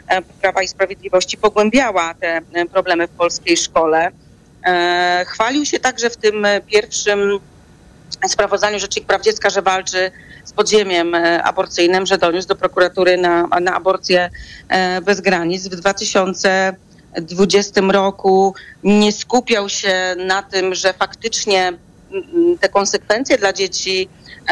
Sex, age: female, 40-59